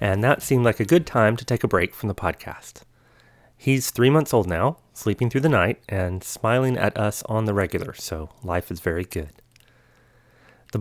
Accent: American